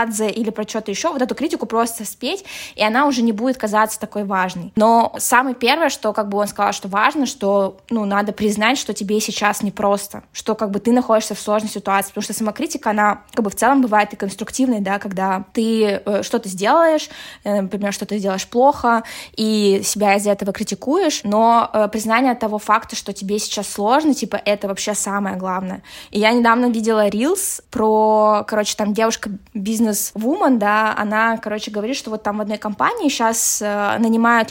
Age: 20-39